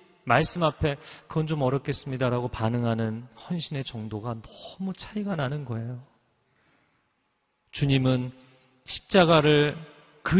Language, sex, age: Korean, male, 30-49